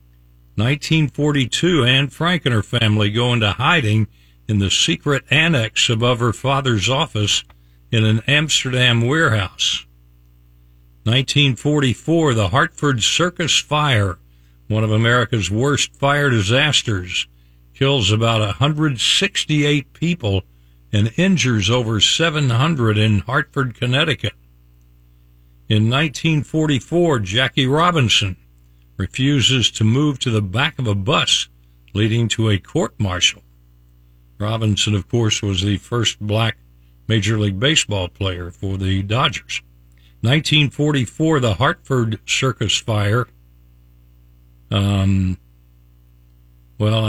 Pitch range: 90-135 Hz